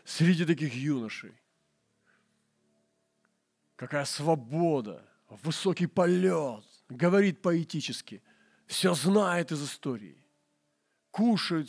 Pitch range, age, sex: 115-160 Hz, 40-59, male